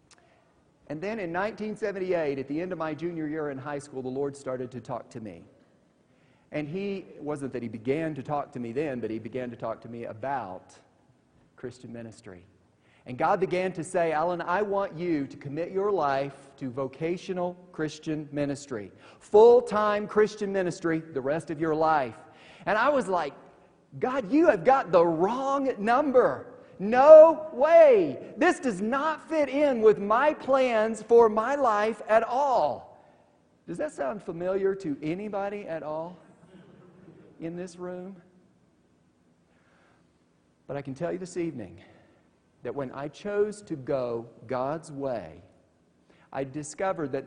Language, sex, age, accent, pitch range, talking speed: English, male, 40-59, American, 130-195 Hz, 155 wpm